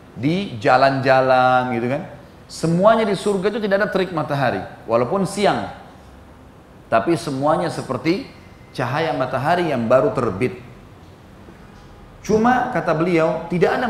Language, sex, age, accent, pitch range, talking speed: English, male, 30-49, Indonesian, 125-185 Hz, 115 wpm